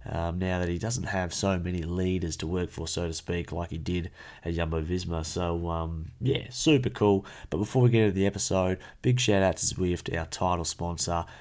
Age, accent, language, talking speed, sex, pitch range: 30-49, Australian, English, 210 wpm, male, 85-100 Hz